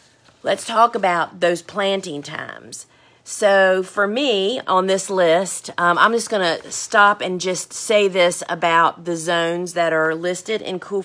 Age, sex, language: 40-59, female, English